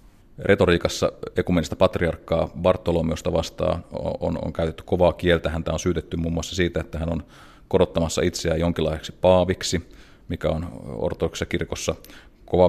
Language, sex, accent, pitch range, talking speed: Finnish, male, native, 80-90 Hz, 135 wpm